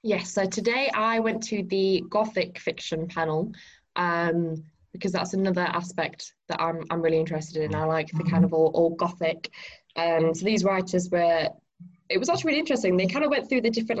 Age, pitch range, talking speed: 10-29, 170-210 Hz, 205 wpm